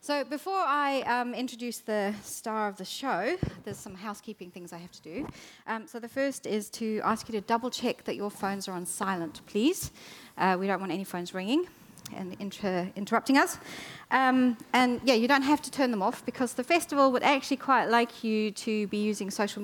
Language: English